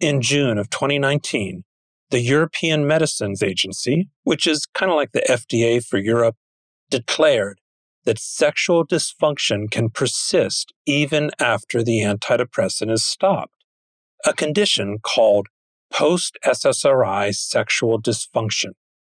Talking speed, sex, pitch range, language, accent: 110 wpm, male, 110-145 Hz, English, American